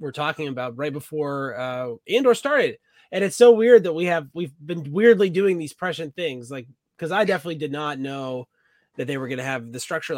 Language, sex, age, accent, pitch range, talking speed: English, male, 20-39, American, 145-200 Hz, 225 wpm